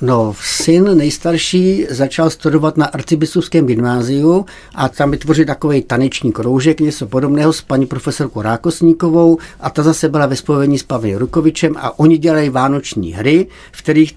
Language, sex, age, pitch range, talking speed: Czech, male, 60-79, 130-160 Hz, 150 wpm